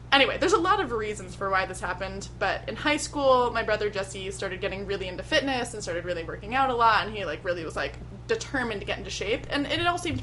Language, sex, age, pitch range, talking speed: English, female, 20-39, 195-265 Hz, 260 wpm